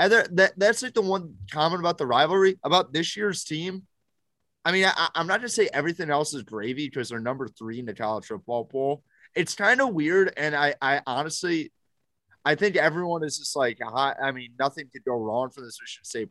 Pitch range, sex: 125-185 Hz, male